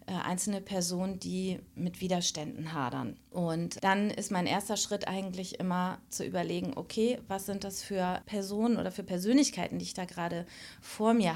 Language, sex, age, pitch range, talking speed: German, female, 30-49, 175-215 Hz, 165 wpm